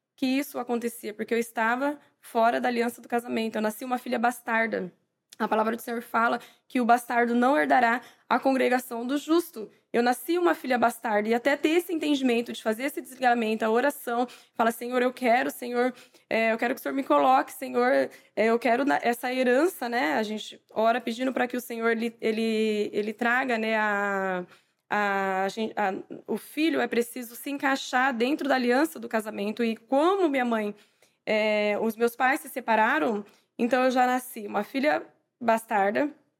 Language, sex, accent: Portuguese, female, Brazilian